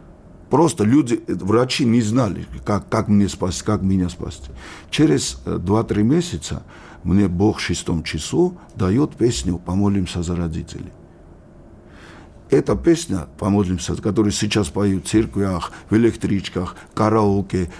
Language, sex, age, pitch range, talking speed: Russian, male, 60-79, 90-115 Hz, 130 wpm